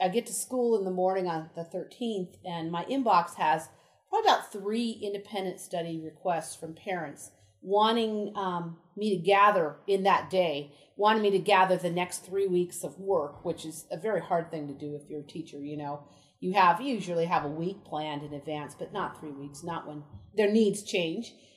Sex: female